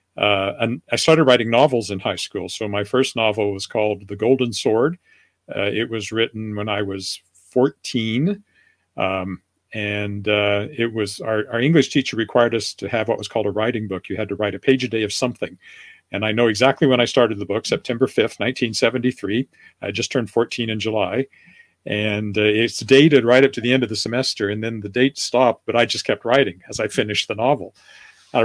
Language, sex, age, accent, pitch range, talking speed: English, male, 50-69, American, 105-135 Hz, 215 wpm